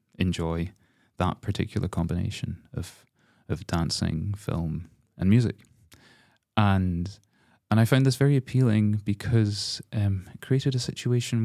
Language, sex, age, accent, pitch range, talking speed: English, male, 30-49, British, 95-115 Hz, 120 wpm